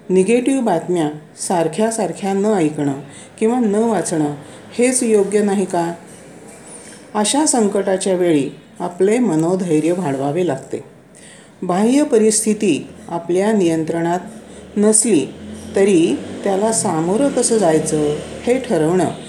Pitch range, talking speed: 165-220 Hz, 95 wpm